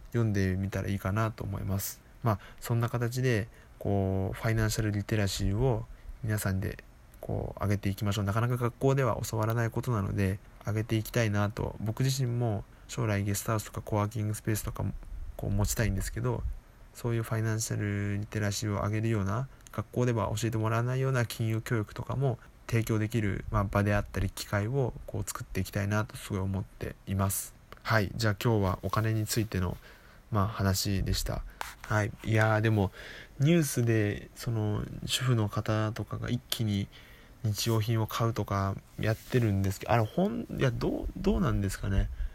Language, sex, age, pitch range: Japanese, male, 20-39, 100-120 Hz